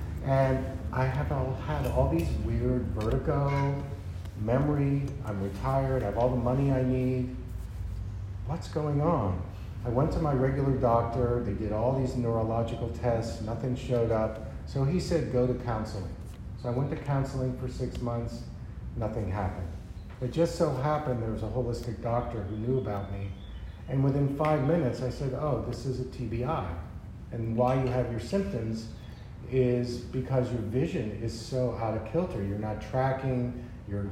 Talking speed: 170 wpm